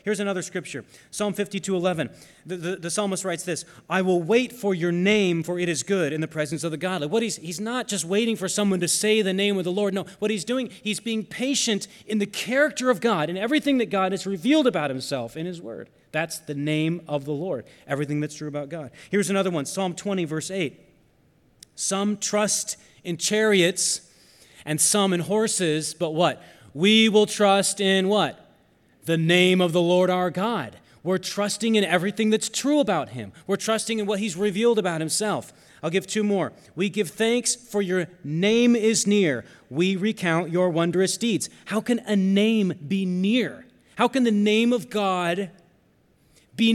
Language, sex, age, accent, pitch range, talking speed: English, male, 30-49, American, 165-210 Hz, 195 wpm